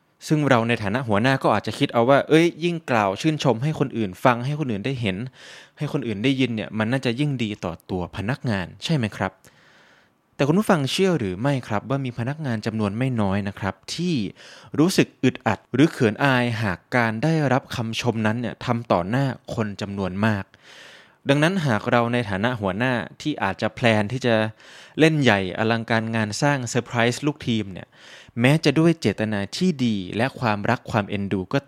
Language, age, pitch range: Thai, 20-39, 105-135 Hz